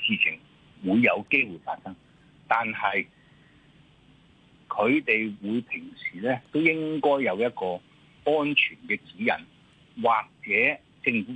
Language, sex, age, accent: Chinese, male, 60-79, native